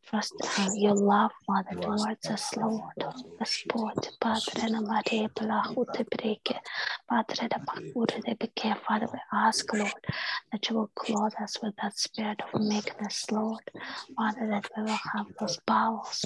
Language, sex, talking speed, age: English, female, 135 wpm, 20-39